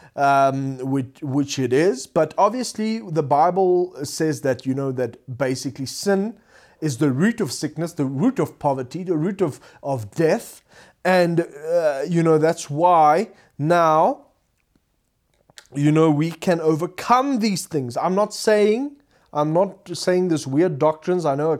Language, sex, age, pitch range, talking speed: English, male, 30-49, 135-175 Hz, 155 wpm